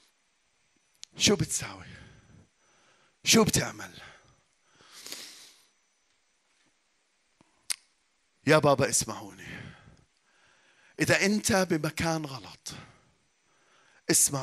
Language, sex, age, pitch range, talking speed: Arabic, male, 40-59, 150-220 Hz, 50 wpm